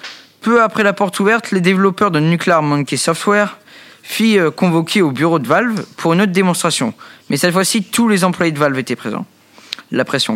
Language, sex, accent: French, male, French